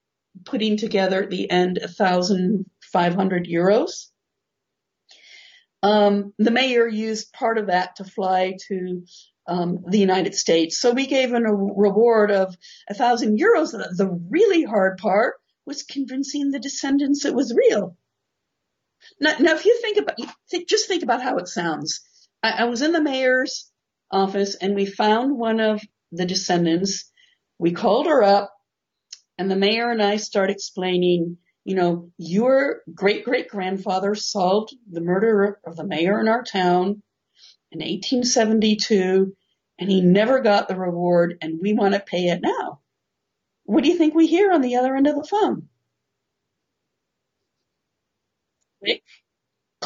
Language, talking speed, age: English, 145 wpm, 50-69